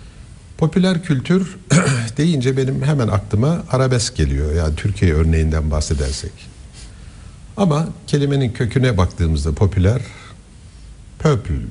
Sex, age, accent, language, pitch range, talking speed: male, 60-79, native, Turkish, 85-115 Hz, 90 wpm